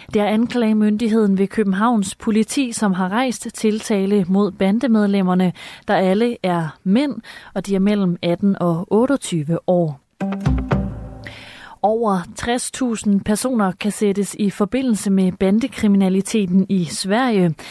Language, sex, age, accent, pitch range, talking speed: Danish, female, 30-49, native, 185-220 Hz, 120 wpm